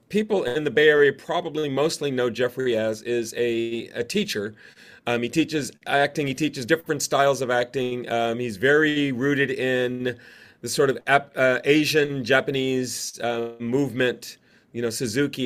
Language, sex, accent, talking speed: English, male, American, 150 wpm